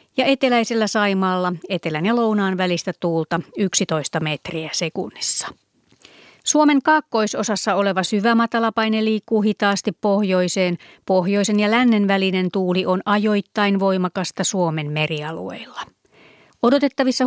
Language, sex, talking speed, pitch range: Finnish, female, 105 wpm, 180-220 Hz